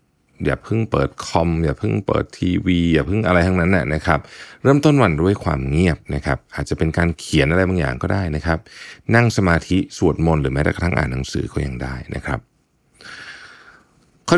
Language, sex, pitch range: Thai, male, 75-100 Hz